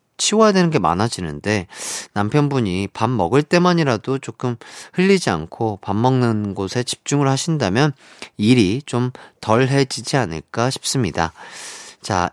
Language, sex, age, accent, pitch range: Korean, male, 30-49, native, 115-180 Hz